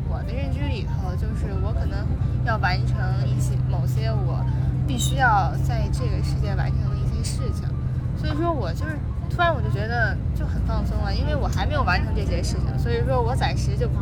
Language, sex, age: Chinese, female, 10-29